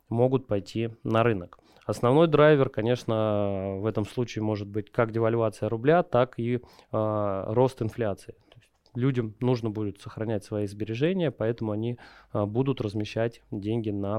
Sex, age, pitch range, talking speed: male, 20-39, 105-135 Hz, 140 wpm